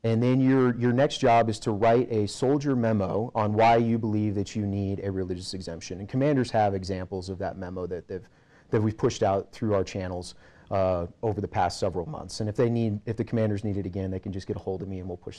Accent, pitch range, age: American, 95-120 Hz, 30-49